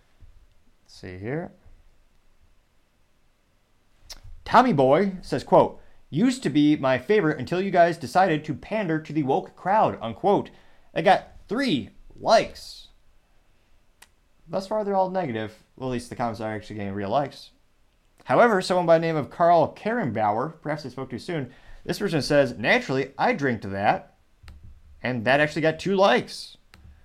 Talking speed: 150 wpm